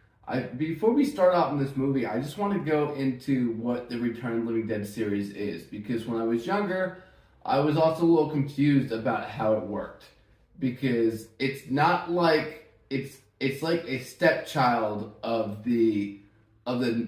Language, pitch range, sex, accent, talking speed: English, 110-135 Hz, male, American, 180 wpm